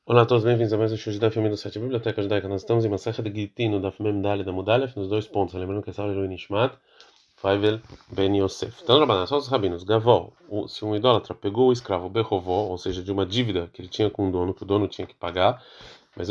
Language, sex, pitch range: Portuguese, male, 95-115 Hz